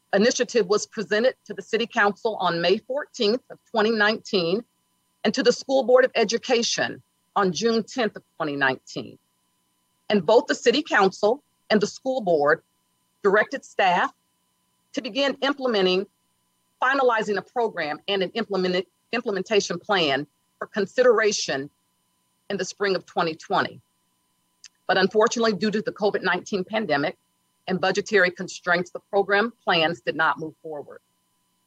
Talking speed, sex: 130 wpm, female